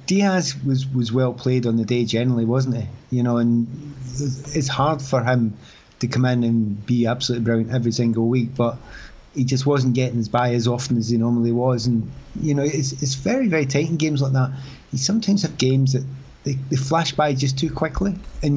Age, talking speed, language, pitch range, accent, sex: 30-49, 215 wpm, English, 120-135 Hz, British, male